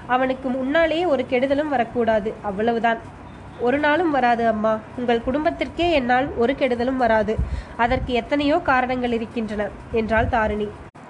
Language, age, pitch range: Tamil, 20-39, 225-275 Hz